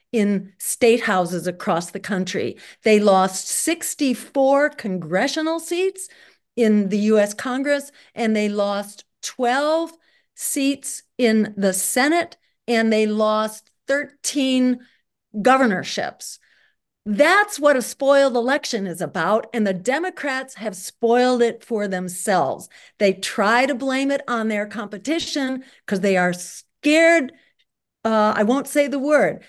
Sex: female